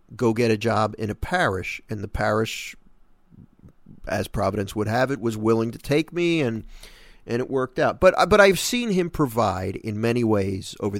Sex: male